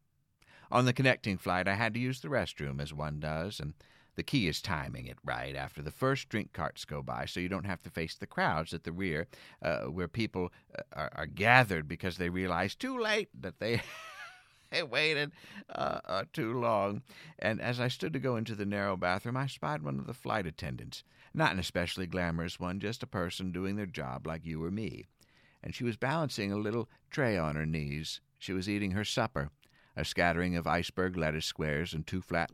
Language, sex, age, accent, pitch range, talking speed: English, male, 50-69, American, 80-110 Hz, 210 wpm